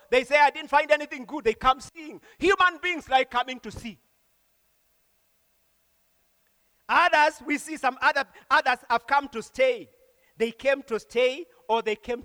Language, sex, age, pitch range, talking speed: English, male, 40-59, 225-275 Hz, 160 wpm